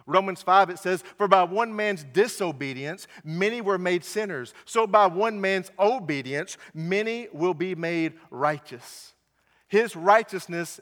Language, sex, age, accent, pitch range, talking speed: English, male, 50-69, American, 145-195 Hz, 140 wpm